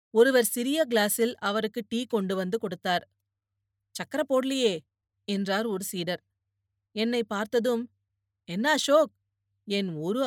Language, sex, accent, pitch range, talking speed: Tamil, female, native, 175-235 Hz, 105 wpm